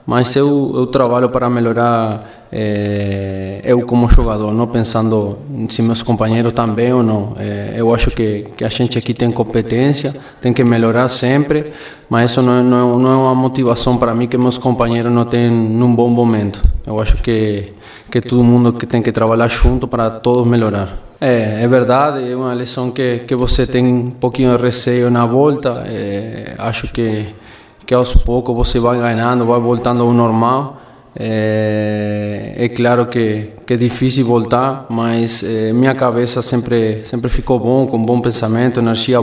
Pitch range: 115-125 Hz